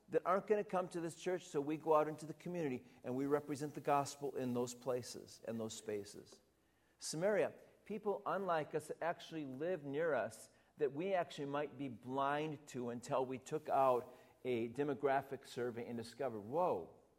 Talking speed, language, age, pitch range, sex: 180 wpm, English, 50-69, 125-175 Hz, male